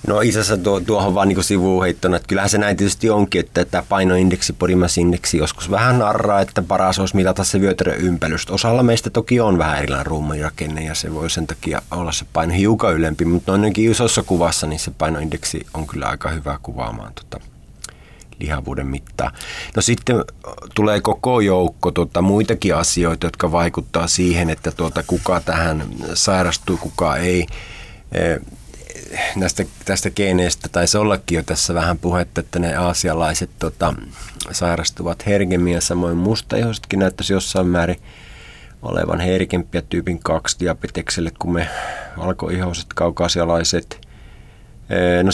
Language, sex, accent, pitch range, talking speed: Finnish, male, native, 80-95 Hz, 145 wpm